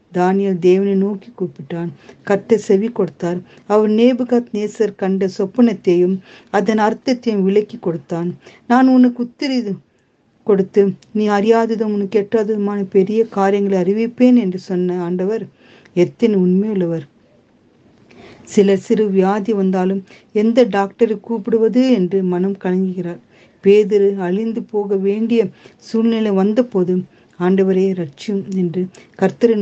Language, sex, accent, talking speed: Tamil, female, native, 75 wpm